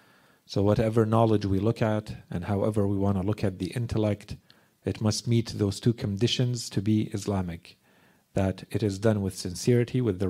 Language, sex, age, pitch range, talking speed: English, male, 40-59, 100-115 Hz, 185 wpm